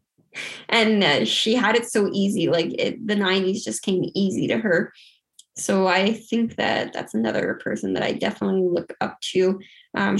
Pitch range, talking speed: 195-230 Hz, 170 wpm